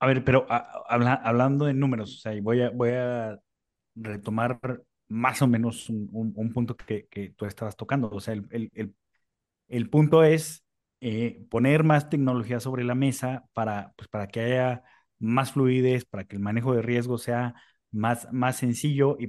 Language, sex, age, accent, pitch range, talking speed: Spanish, male, 30-49, Mexican, 110-130 Hz, 185 wpm